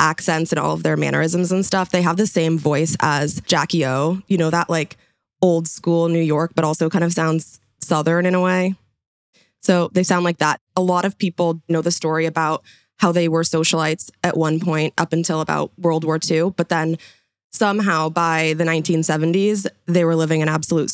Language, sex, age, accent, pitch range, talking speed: English, female, 20-39, American, 160-185 Hz, 200 wpm